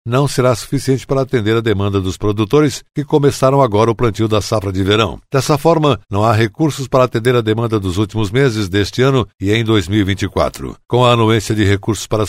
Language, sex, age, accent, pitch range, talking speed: Portuguese, male, 60-79, Brazilian, 110-135 Hz, 200 wpm